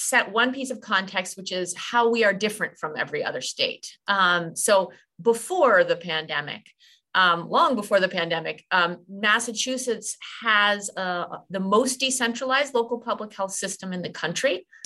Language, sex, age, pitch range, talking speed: English, female, 30-49, 175-230 Hz, 160 wpm